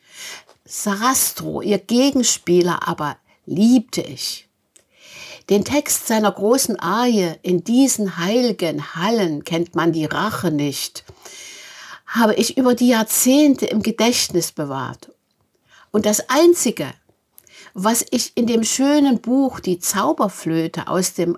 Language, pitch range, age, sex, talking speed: German, 185-250 Hz, 60-79, female, 115 wpm